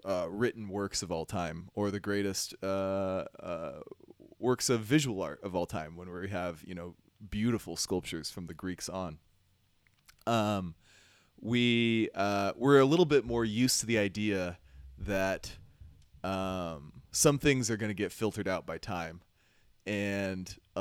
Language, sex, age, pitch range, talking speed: English, male, 20-39, 90-115 Hz, 155 wpm